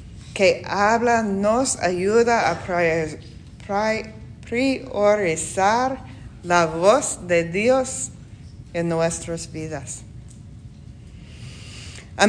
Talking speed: 70 wpm